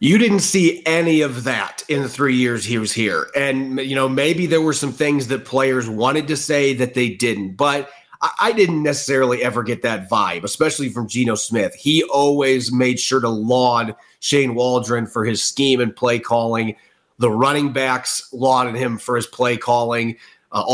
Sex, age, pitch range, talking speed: male, 30-49, 120-140 Hz, 190 wpm